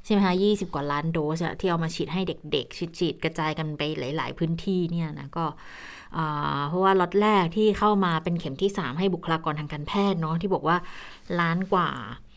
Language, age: Thai, 20-39